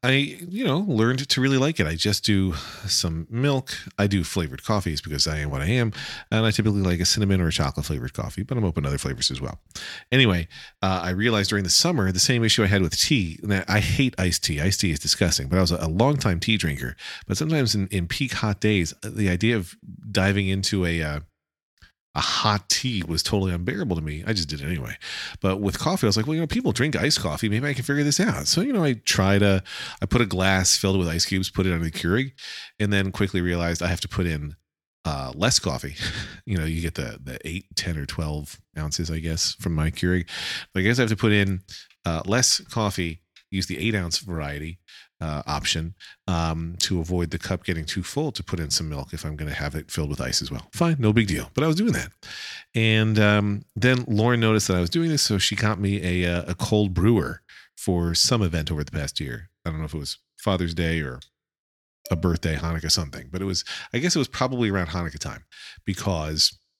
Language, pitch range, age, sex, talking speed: English, 80-110 Hz, 40-59, male, 240 wpm